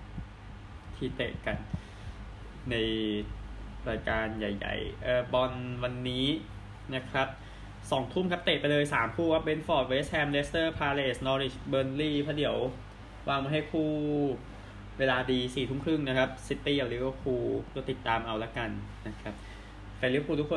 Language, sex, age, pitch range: Thai, male, 20-39, 110-140 Hz